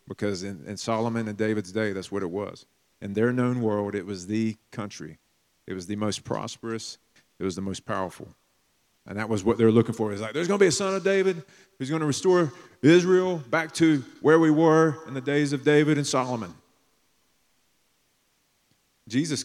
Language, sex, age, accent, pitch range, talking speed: Ukrainian, male, 30-49, American, 105-130 Hz, 195 wpm